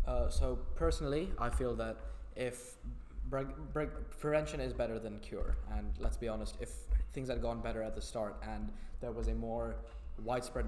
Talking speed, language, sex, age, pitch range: 180 wpm, English, male, 10-29, 105-120 Hz